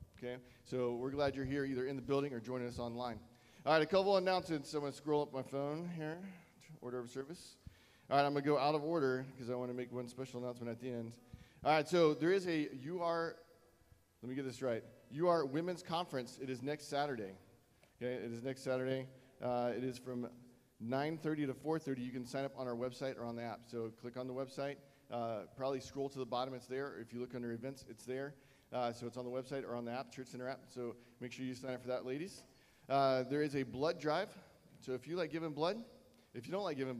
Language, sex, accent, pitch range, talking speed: English, male, American, 125-150 Hz, 240 wpm